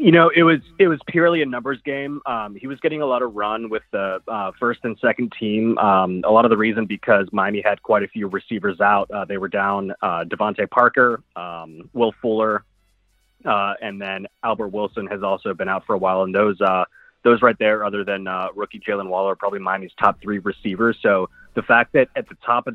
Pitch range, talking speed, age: 95-115 Hz, 230 wpm, 20-39